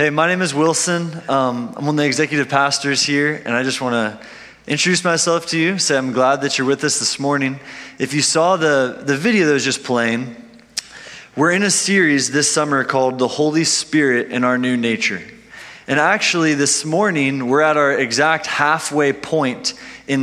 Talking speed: 200 wpm